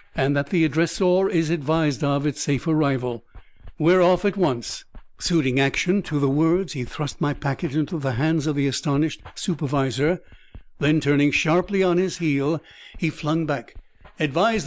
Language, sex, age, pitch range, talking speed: English, male, 60-79, 140-175 Hz, 165 wpm